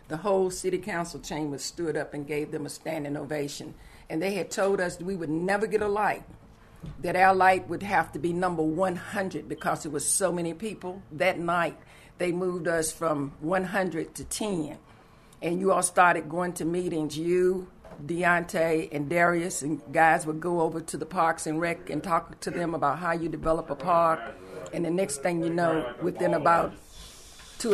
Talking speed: 190 wpm